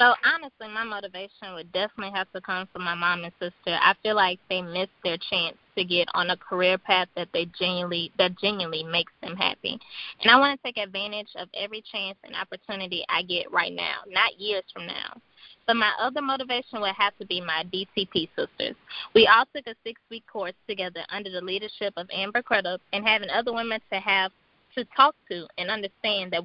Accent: American